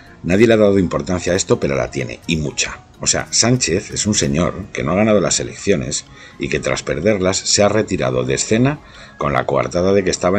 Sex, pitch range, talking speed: male, 75-110 Hz, 225 wpm